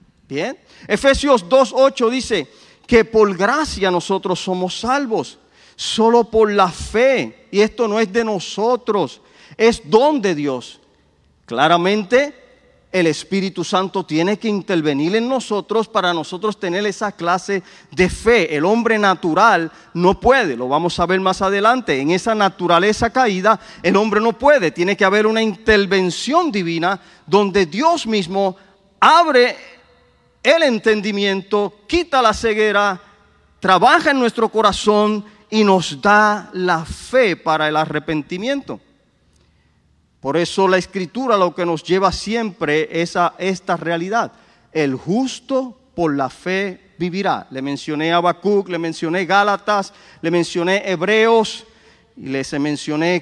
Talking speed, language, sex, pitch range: 135 wpm, Spanish, male, 175-225 Hz